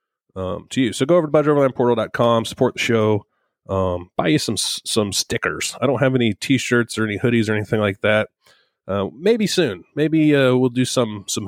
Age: 30-49